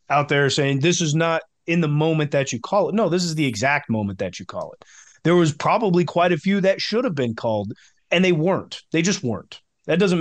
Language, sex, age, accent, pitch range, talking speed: English, male, 30-49, American, 135-170 Hz, 245 wpm